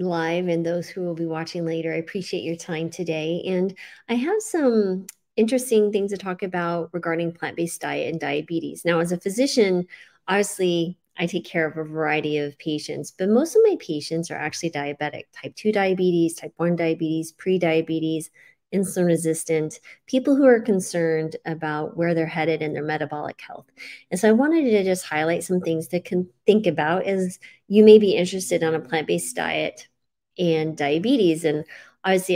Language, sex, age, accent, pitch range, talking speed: English, female, 30-49, American, 165-200 Hz, 180 wpm